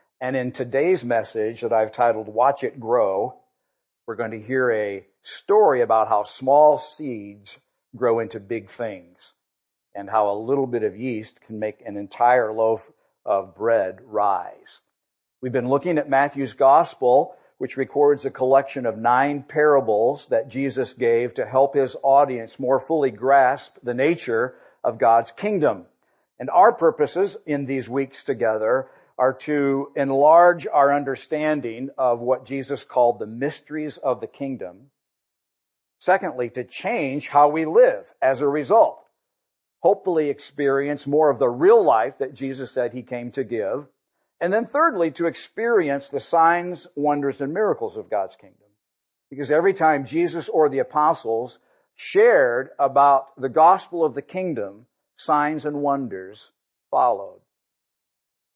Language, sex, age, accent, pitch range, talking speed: English, male, 50-69, American, 120-155 Hz, 145 wpm